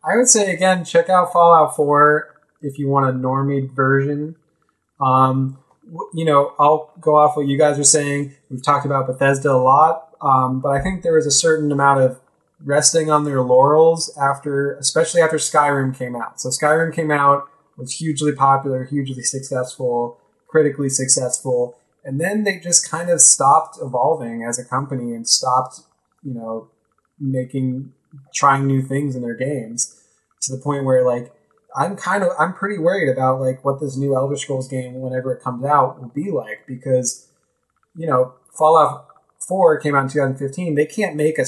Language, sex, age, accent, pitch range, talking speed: English, male, 20-39, American, 130-150 Hz, 180 wpm